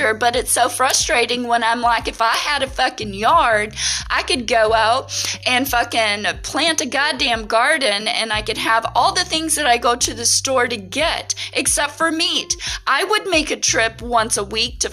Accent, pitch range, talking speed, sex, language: American, 205-265 Hz, 200 wpm, female, English